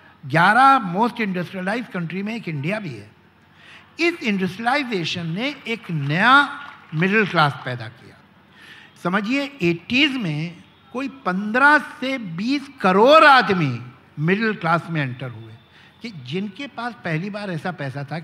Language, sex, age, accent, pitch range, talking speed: Hindi, male, 60-79, native, 155-255 Hz, 130 wpm